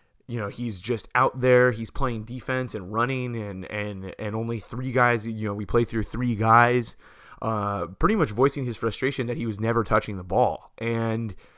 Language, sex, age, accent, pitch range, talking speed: English, male, 20-39, American, 110-130 Hz, 195 wpm